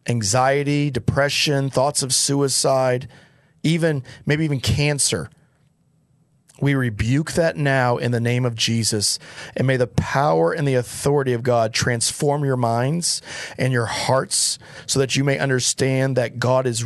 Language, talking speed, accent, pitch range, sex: English, 145 wpm, American, 125-150 Hz, male